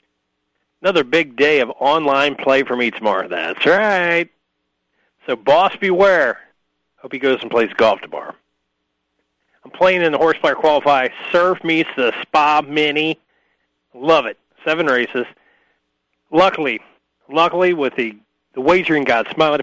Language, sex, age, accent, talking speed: English, male, 40-59, American, 140 wpm